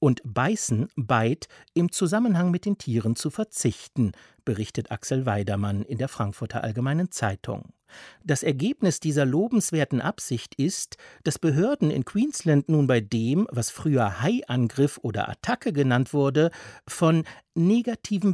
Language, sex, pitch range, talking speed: German, male, 115-160 Hz, 130 wpm